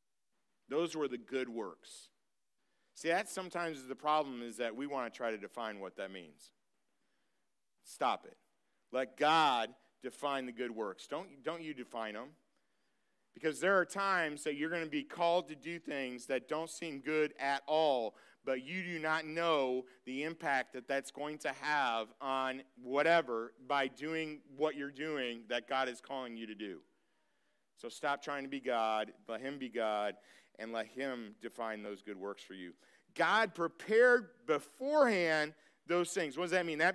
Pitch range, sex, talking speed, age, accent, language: 110-160 Hz, male, 175 wpm, 40-59, American, English